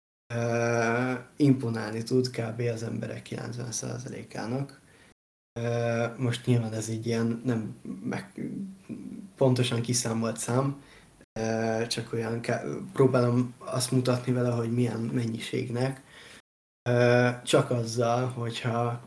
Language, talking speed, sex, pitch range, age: Hungarian, 90 wpm, male, 115-125 Hz, 20-39